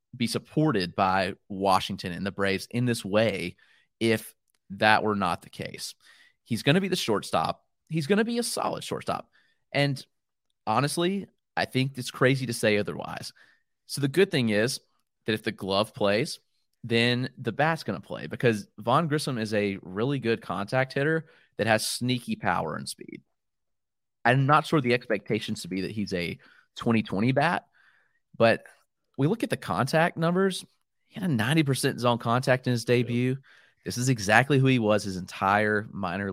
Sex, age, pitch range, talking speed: male, 30-49, 105-145 Hz, 175 wpm